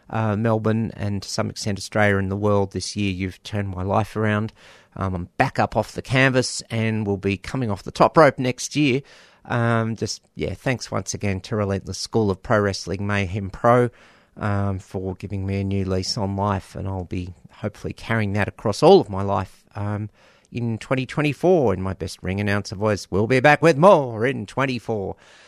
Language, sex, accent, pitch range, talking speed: English, male, Australian, 100-125 Hz, 200 wpm